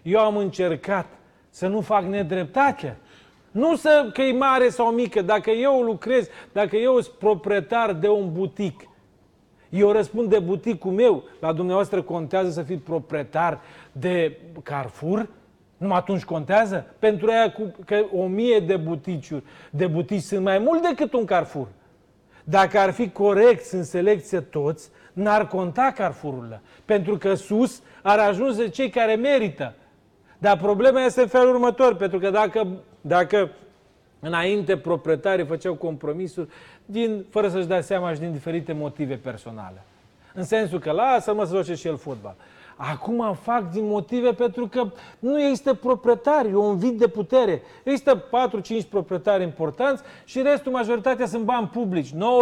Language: Romanian